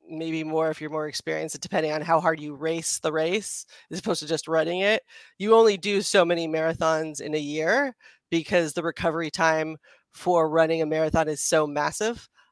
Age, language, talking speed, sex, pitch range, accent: 30-49, English, 190 wpm, female, 160-195 Hz, American